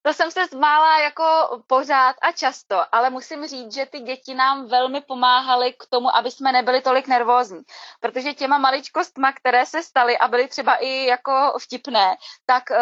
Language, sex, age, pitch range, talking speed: Czech, female, 20-39, 235-280 Hz, 170 wpm